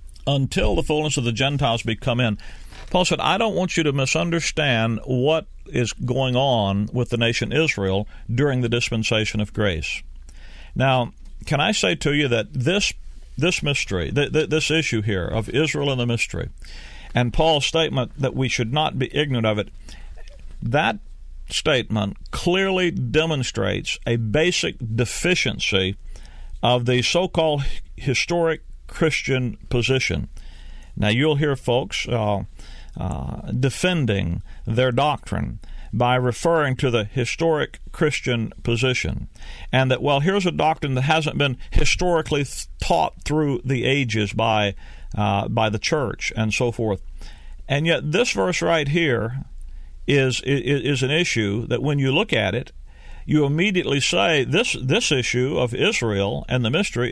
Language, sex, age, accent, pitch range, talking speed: English, male, 50-69, American, 105-150 Hz, 145 wpm